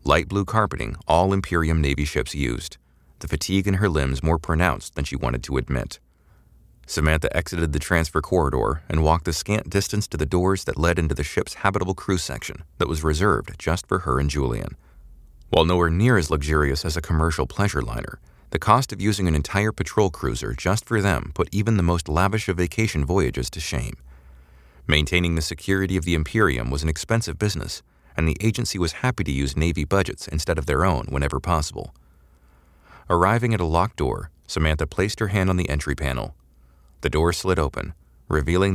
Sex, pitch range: male, 70-95 Hz